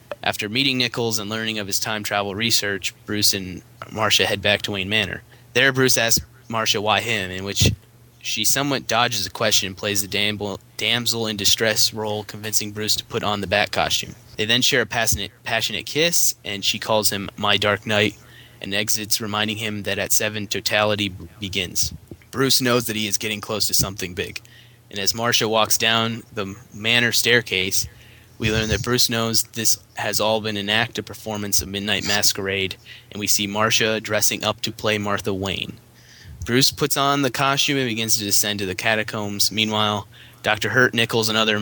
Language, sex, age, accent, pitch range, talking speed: English, male, 20-39, American, 100-115 Hz, 190 wpm